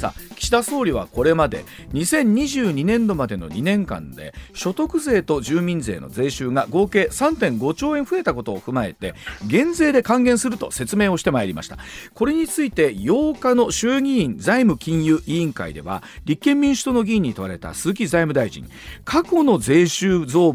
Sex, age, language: male, 40-59, Japanese